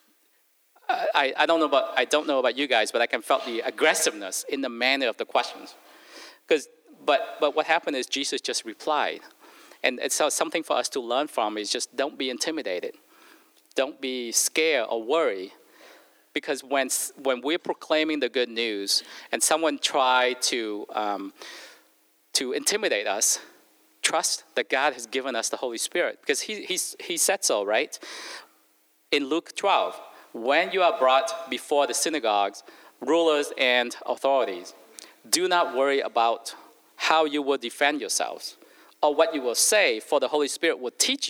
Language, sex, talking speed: English, male, 165 wpm